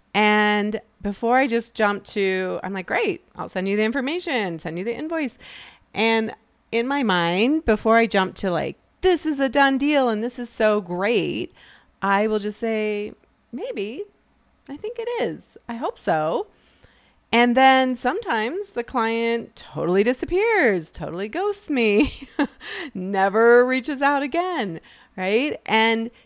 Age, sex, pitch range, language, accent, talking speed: 30-49, female, 200-275 Hz, English, American, 150 wpm